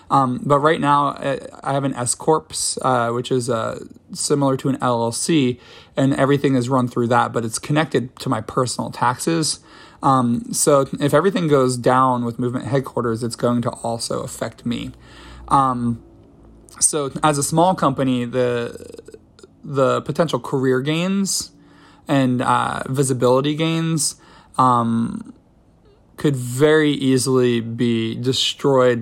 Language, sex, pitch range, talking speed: English, male, 120-150 Hz, 135 wpm